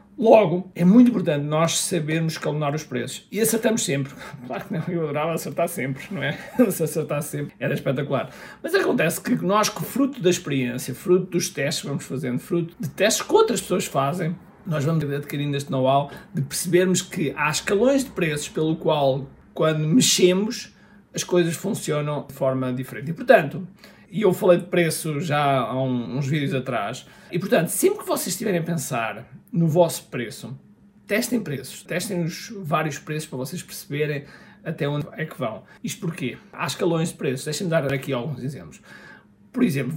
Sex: male